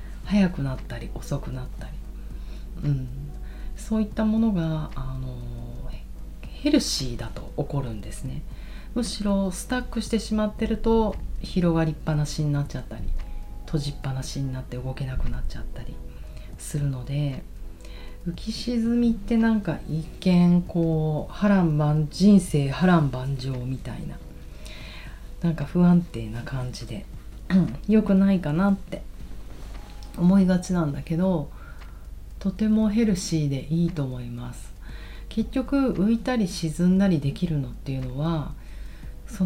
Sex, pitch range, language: female, 130-200 Hz, Japanese